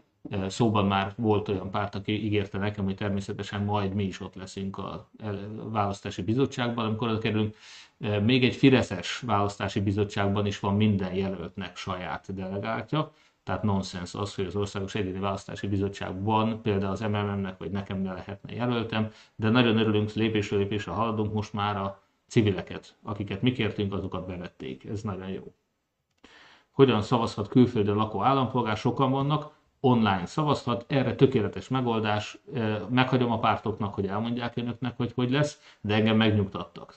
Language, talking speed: Hungarian, 150 wpm